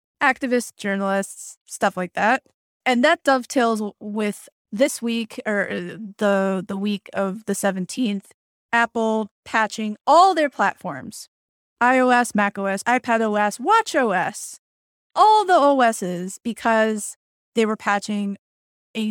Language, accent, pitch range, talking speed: English, American, 200-245 Hz, 115 wpm